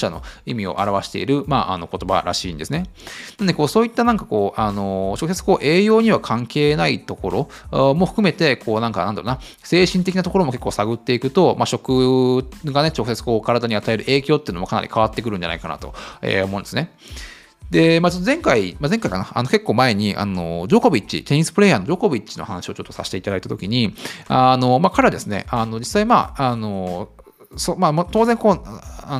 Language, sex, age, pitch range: Japanese, male, 20-39, 110-175 Hz